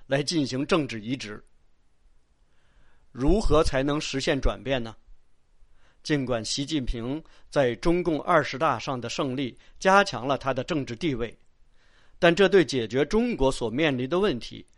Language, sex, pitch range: Chinese, male, 115-160 Hz